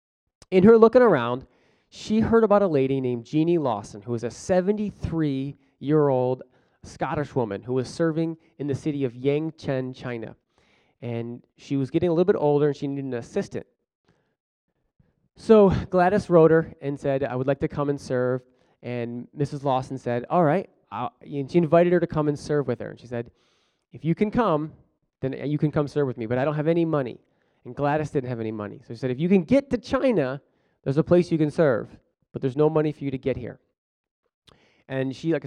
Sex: male